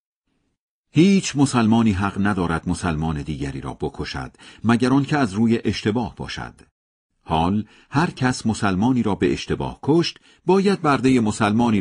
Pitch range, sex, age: 80-130 Hz, male, 50-69